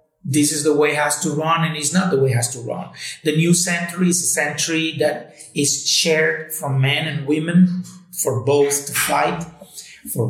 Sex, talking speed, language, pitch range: male, 205 wpm, Bulgarian, 145-180 Hz